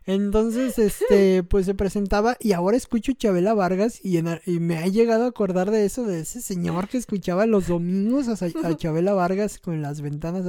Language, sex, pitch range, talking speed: Spanish, male, 165-210 Hz, 195 wpm